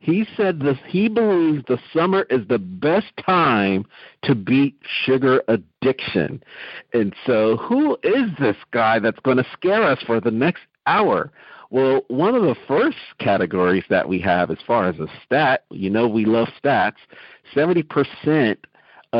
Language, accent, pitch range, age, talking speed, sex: English, American, 105-140 Hz, 50-69, 155 wpm, male